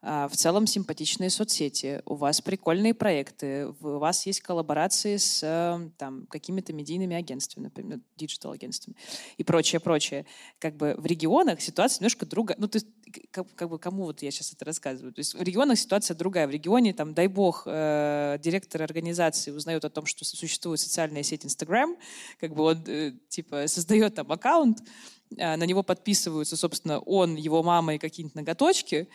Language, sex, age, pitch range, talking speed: Russian, female, 20-39, 155-205 Hz, 165 wpm